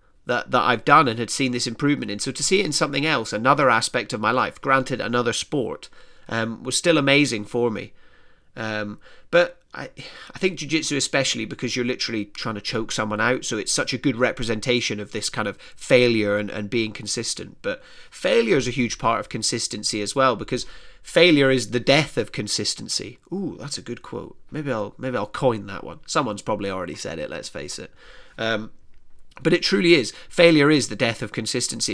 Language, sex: English, male